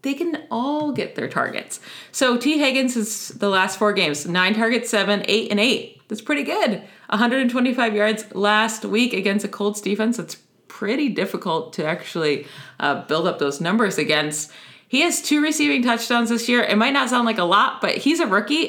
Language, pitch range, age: English, 190-245 Hz, 30-49